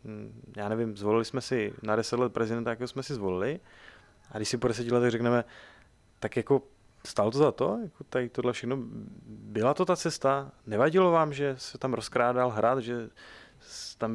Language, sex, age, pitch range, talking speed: Czech, male, 20-39, 115-135 Hz, 180 wpm